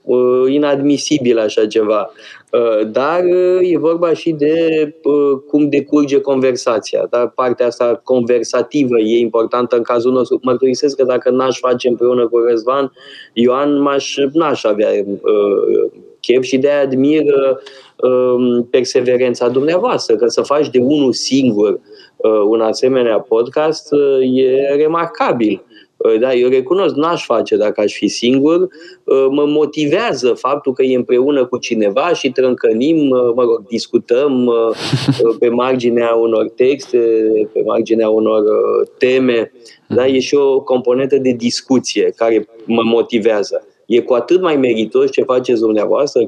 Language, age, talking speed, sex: Romanian, 20-39, 125 wpm, male